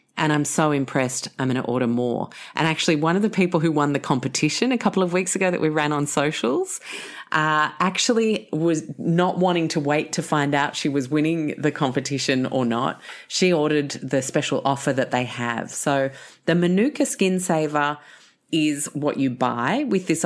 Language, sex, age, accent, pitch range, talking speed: English, female, 40-59, Australian, 140-175 Hz, 195 wpm